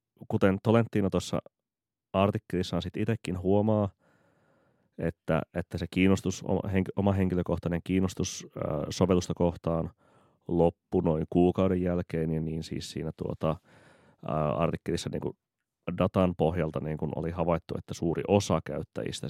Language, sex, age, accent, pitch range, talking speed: Finnish, male, 30-49, native, 80-95 Hz, 120 wpm